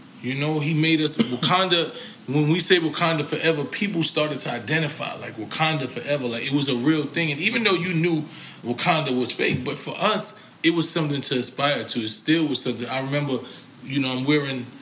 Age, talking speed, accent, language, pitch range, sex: 20-39, 205 wpm, American, English, 120-150 Hz, male